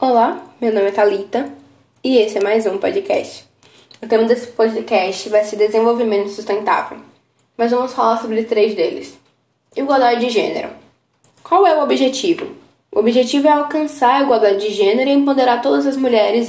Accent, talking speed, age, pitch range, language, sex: Brazilian, 165 wpm, 10-29, 220-260 Hz, Portuguese, female